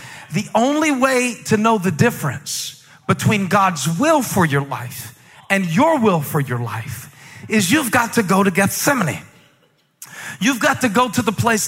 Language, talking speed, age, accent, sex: English, 170 wpm, 40-59, American, male